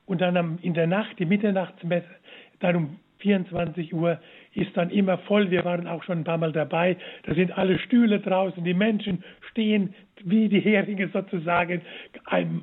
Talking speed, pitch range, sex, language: 170 wpm, 170-200 Hz, male, German